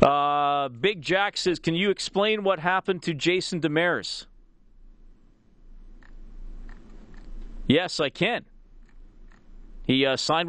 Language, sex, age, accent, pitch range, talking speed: English, male, 40-59, American, 110-155 Hz, 105 wpm